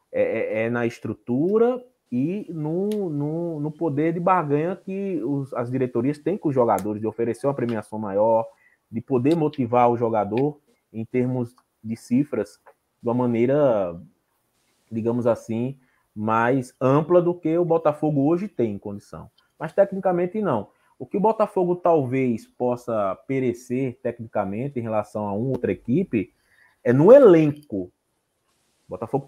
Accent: Brazilian